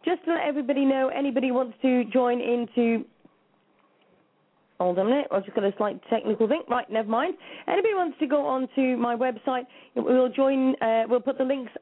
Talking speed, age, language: 195 wpm, 30-49, English